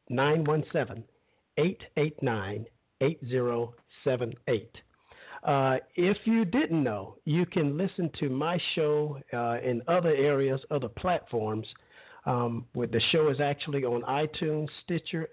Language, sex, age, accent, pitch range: English, male, 50-69, American, 130-185 Hz